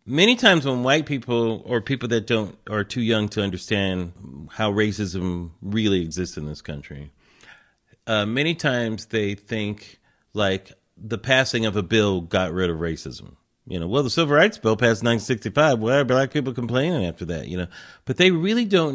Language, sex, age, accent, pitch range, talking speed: English, male, 40-59, American, 95-135 Hz, 185 wpm